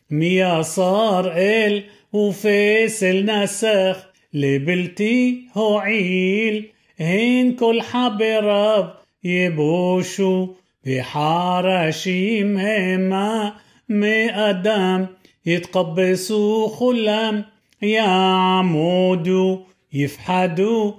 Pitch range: 185-220 Hz